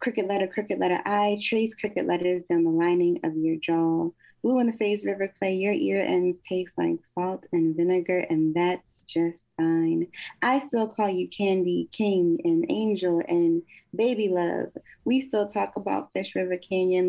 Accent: American